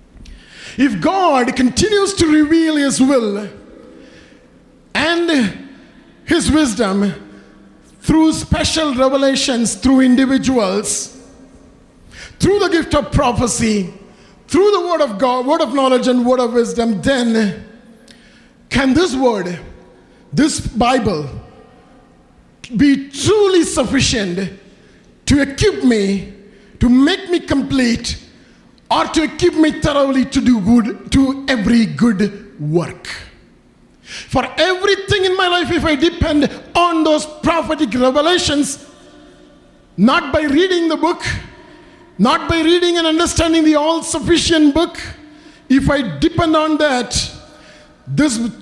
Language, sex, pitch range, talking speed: English, male, 235-320 Hz, 110 wpm